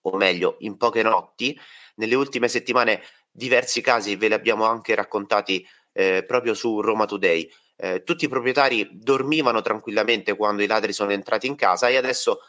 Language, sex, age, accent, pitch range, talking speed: Italian, male, 30-49, native, 105-155 Hz, 170 wpm